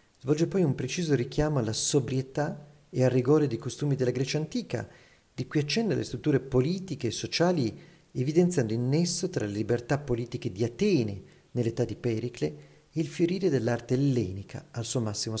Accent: native